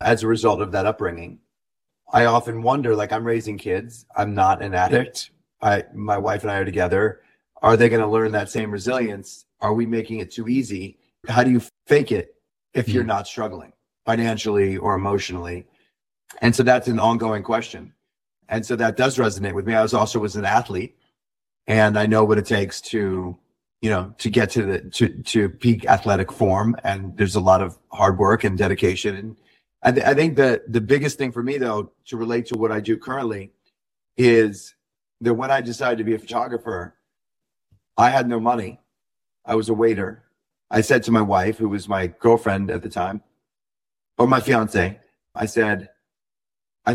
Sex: male